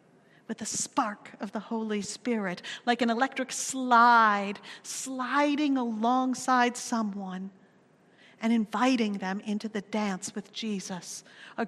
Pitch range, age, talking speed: 210-255 Hz, 50-69, 120 wpm